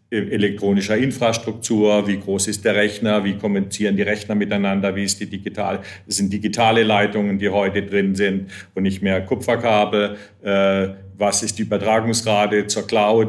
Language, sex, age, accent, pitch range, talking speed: English, male, 50-69, German, 100-115 Hz, 150 wpm